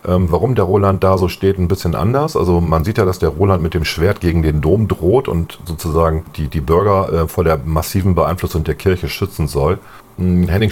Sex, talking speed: male, 205 wpm